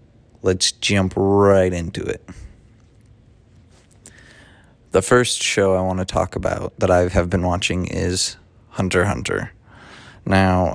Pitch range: 90-105 Hz